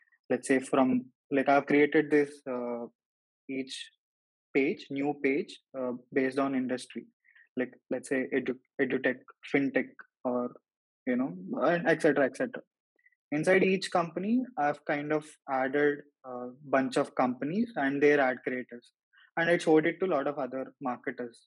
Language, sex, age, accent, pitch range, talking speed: English, male, 20-39, Indian, 125-155 Hz, 150 wpm